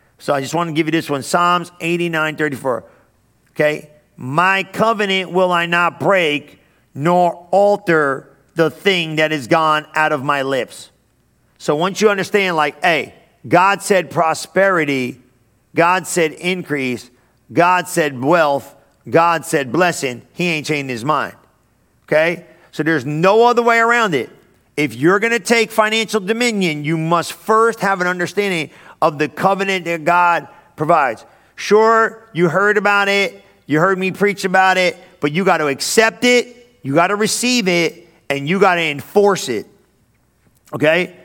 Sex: male